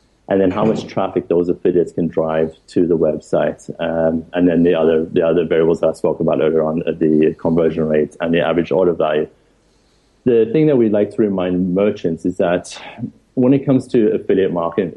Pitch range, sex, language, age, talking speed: 85-105 Hz, male, English, 30-49, 205 wpm